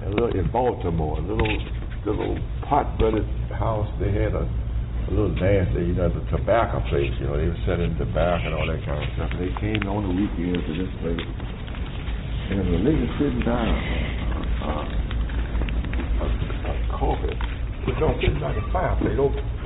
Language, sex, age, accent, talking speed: English, male, 60-79, American, 185 wpm